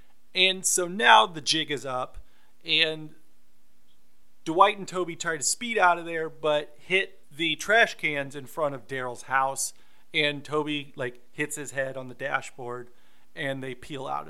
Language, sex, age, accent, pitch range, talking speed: English, male, 30-49, American, 135-180 Hz, 170 wpm